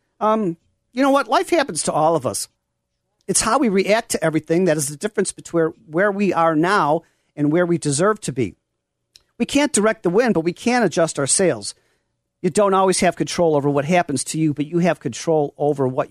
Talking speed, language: 215 wpm, English